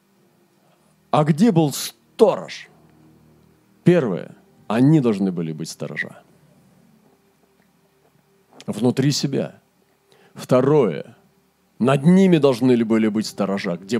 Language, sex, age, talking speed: Russian, male, 40-59, 85 wpm